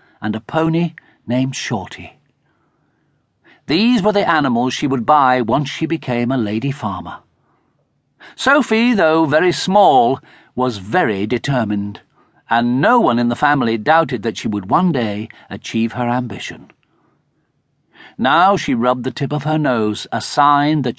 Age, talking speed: 50-69, 145 wpm